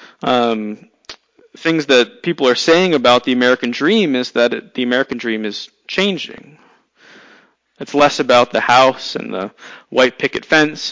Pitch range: 120-150 Hz